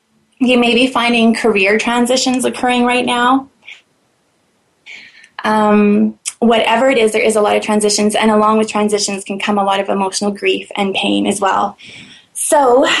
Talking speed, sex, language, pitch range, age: 160 wpm, female, English, 210-235 Hz, 20-39